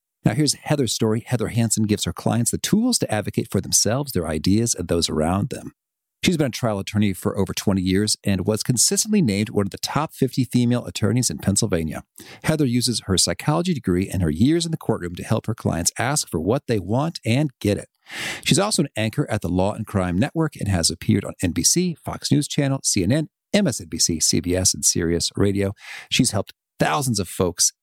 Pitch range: 95-135 Hz